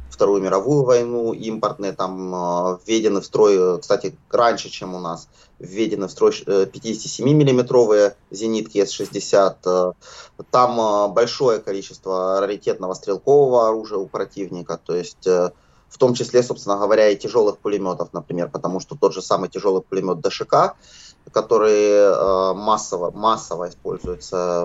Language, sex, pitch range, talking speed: Russian, male, 90-125 Hz, 120 wpm